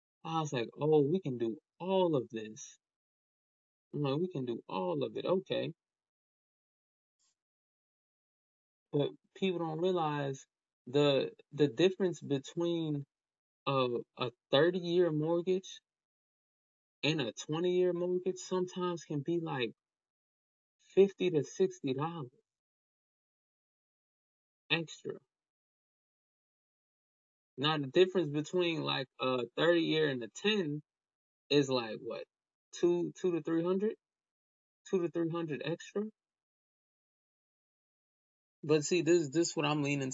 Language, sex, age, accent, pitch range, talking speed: English, male, 20-39, American, 125-170 Hz, 115 wpm